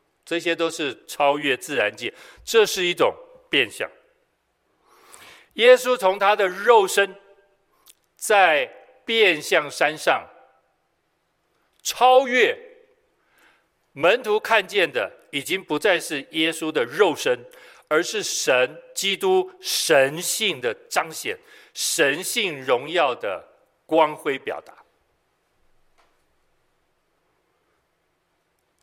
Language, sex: Chinese, male